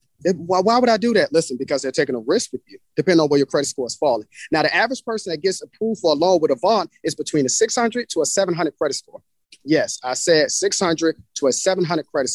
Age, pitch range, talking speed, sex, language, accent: 30-49, 145-195 Hz, 245 wpm, male, English, American